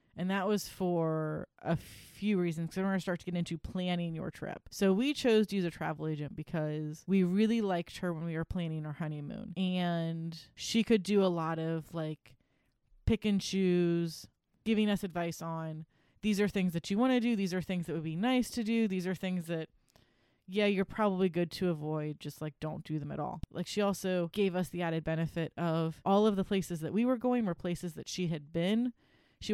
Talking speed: 225 wpm